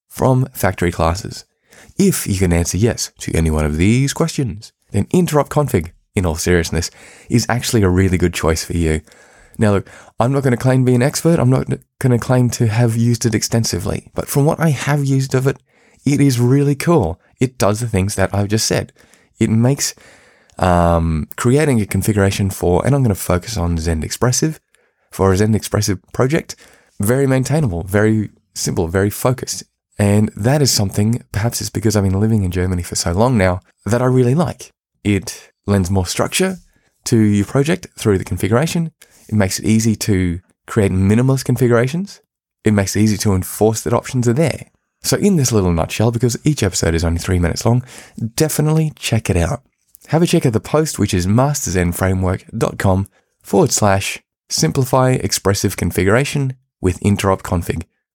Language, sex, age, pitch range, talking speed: English, male, 20-39, 95-130 Hz, 185 wpm